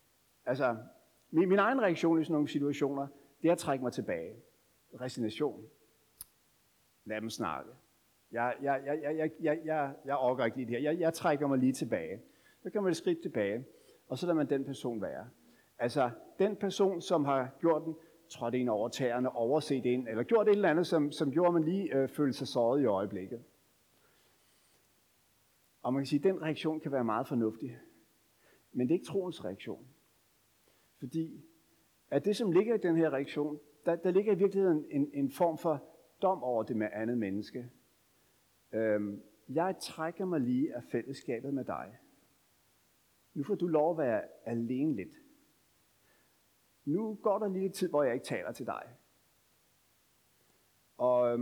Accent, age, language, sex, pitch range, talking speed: native, 60-79, Danish, male, 125-170 Hz, 180 wpm